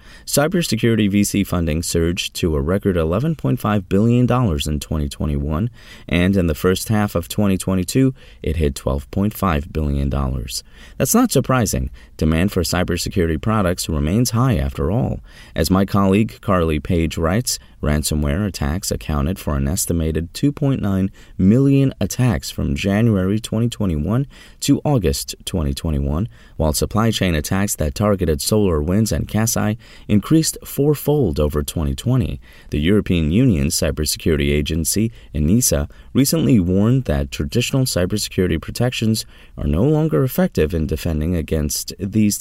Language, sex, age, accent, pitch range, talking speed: English, male, 30-49, American, 75-115 Hz, 125 wpm